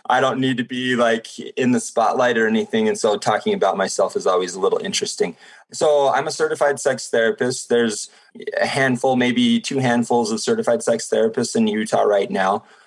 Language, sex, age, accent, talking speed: English, male, 20-39, American, 190 wpm